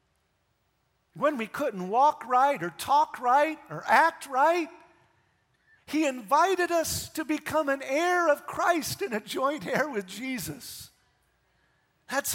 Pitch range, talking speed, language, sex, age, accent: 155-230 Hz, 130 wpm, English, male, 50-69, American